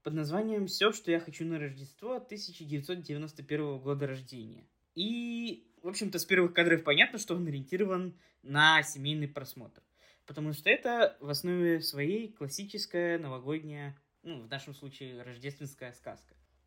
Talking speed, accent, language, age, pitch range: 135 wpm, native, Russian, 20-39, 145-180 Hz